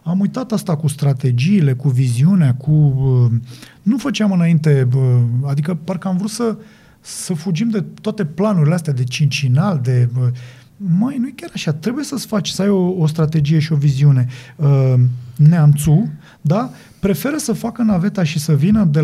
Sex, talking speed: male, 160 wpm